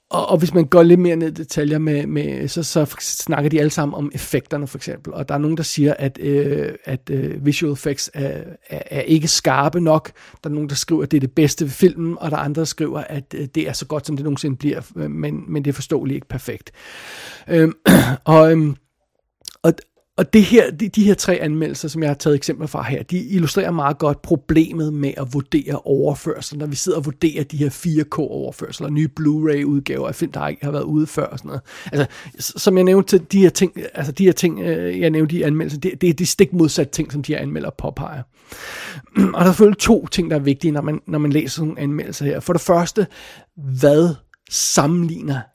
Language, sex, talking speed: Danish, male, 220 wpm